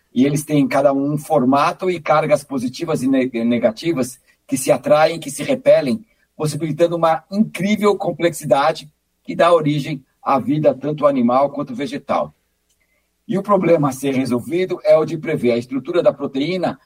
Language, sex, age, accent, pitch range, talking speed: Portuguese, male, 60-79, Brazilian, 135-170 Hz, 160 wpm